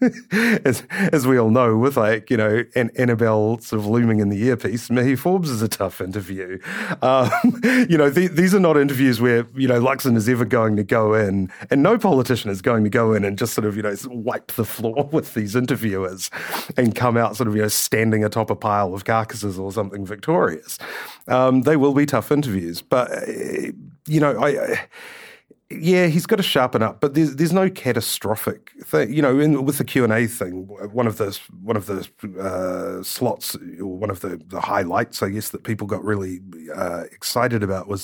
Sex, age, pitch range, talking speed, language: male, 30-49, 100-130 Hz, 205 wpm, English